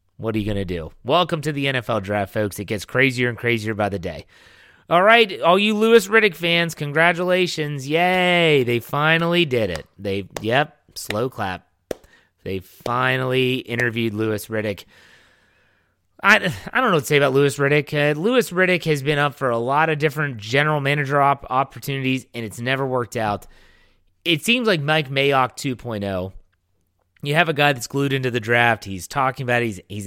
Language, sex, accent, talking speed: English, male, American, 185 wpm